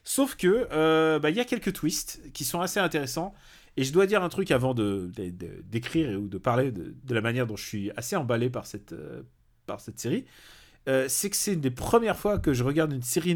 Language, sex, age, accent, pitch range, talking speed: French, male, 30-49, French, 115-155 Hz, 245 wpm